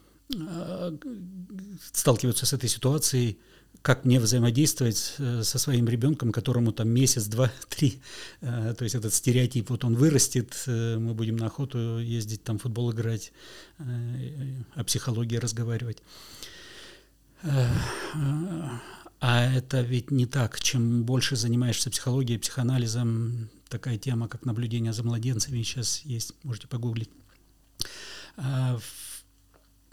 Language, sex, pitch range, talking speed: Russian, male, 115-130 Hz, 105 wpm